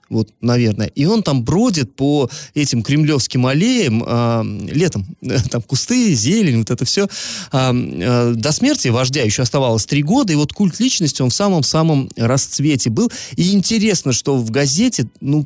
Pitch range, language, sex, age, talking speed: 120-165 Hz, Russian, male, 20-39, 165 wpm